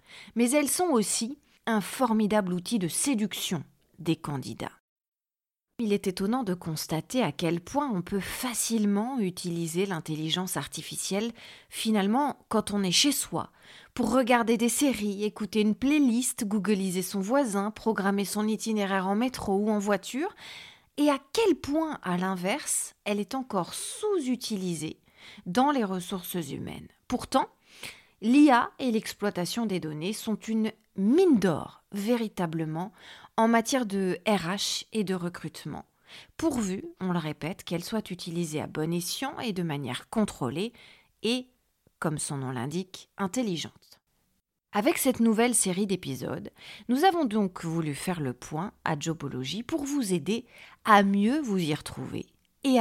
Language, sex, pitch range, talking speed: French, female, 180-240 Hz, 140 wpm